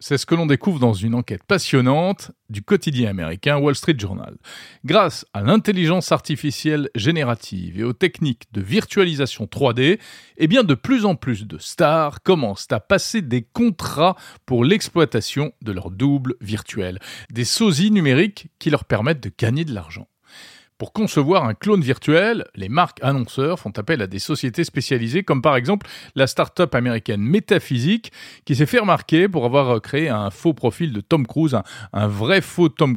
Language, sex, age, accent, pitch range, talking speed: French, male, 40-59, French, 110-165 Hz, 165 wpm